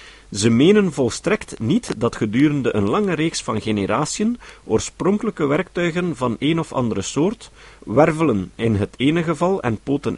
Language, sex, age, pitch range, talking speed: Dutch, male, 50-69, 105-175 Hz, 145 wpm